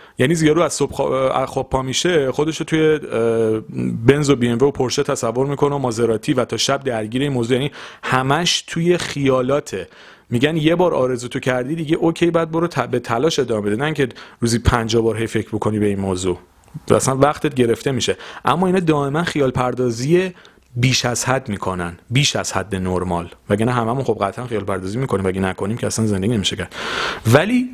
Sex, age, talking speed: male, 40-59, 190 wpm